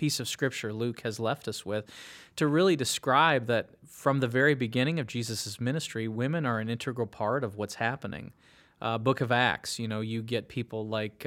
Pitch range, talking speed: 110-135 Hz, 195 wpm